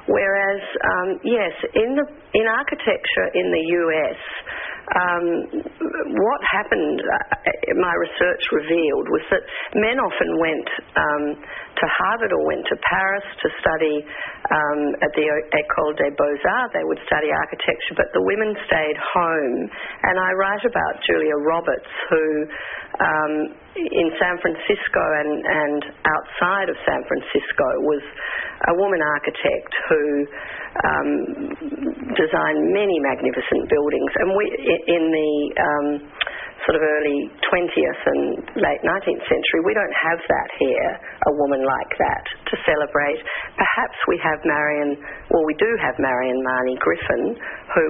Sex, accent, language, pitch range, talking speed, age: female, Australian, English, 150-215 Hz, 135 wpm, 40-59